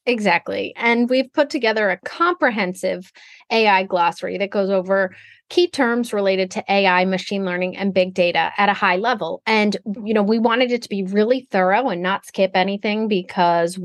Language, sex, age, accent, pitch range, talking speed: English, female, 30-49, American, 185-245 Hz, 180 wpm